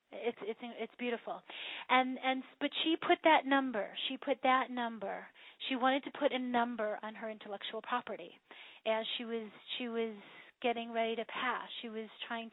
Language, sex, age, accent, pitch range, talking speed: English, female, 30-49, American, 215-245 Hz, 175 wpm